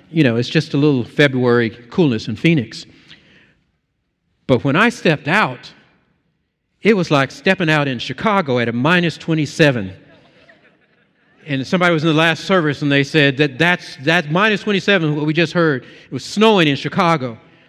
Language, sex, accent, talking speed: English, male, American, 170 wpm